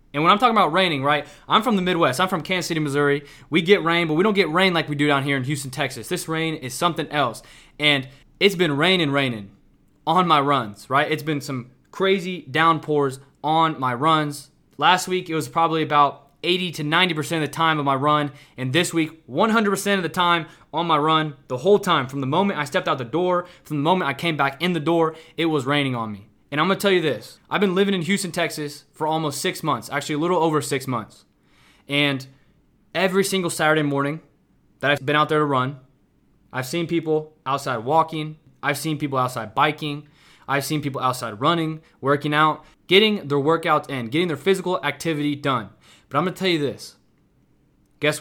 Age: 20-39